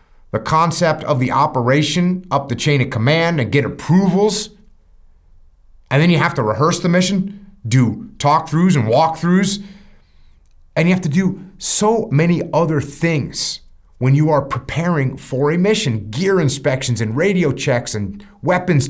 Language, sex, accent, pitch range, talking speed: English, male, American, 105-175 Hz, 155 wpm